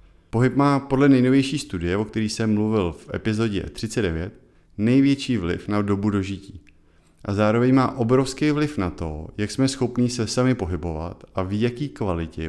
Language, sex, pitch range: Czech, male, 90-115 Hz